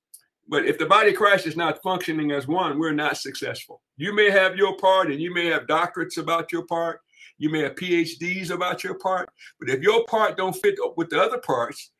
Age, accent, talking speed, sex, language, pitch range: 60-79, American, 220 wpm, male, English, 165-270 Hz